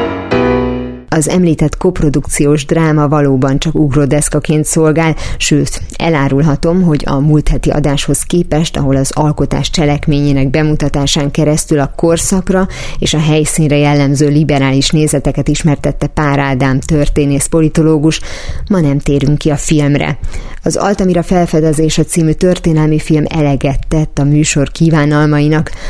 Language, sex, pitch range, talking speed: Hungarian, female, 140-160 Hz, 120 wpm